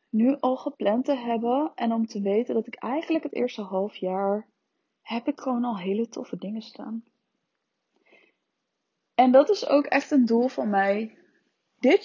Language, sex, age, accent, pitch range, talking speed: Dutch, female, 20-39, Dutch, 220-270 Hz, 170 wpm